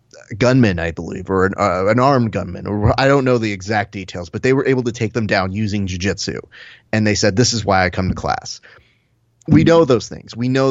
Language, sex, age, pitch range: English, male, 30-49, 100-125 Hz